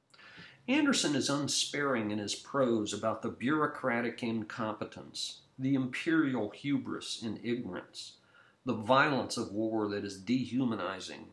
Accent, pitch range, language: American, 110-180 Hz, English